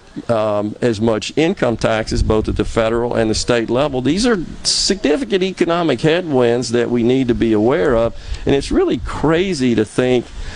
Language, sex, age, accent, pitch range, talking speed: English, male, 50-69, American, 115-160 Hz, 175 wpm